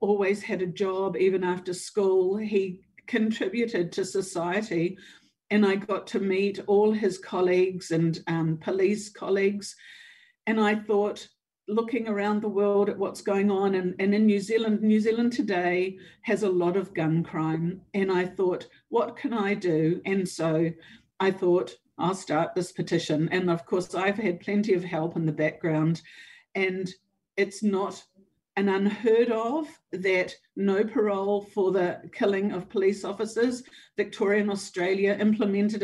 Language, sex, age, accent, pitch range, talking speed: English, female, 50-69, Australian, 175-205 Hz, 155 wpm